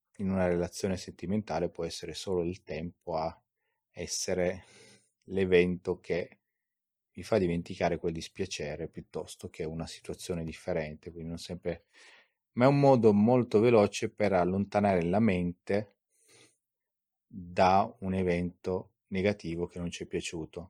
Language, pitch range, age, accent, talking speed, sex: Italian, 85-100 Hz, 30-49, native, 130 wpm, male